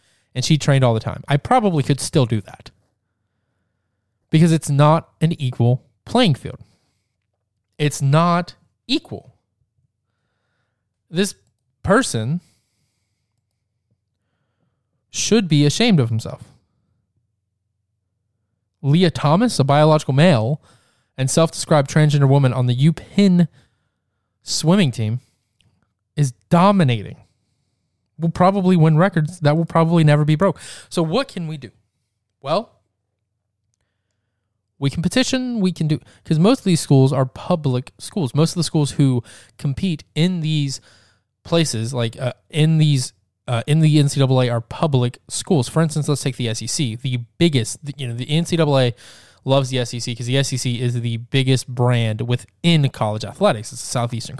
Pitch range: 110-155 Hz